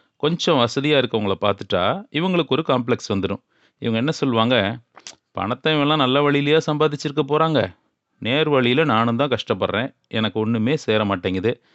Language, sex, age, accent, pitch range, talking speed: Tamil, male, 30-49, native, 110-145 Hz, 135 wpm